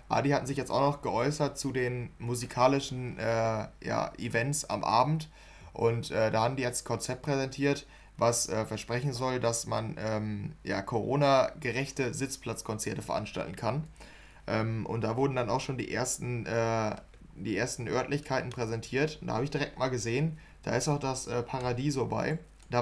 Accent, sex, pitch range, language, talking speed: German, male, 115-140 Hz, German, 160 wpm